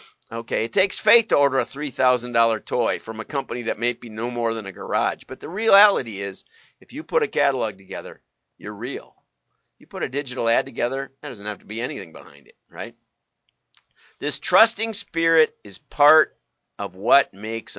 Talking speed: 185 wpm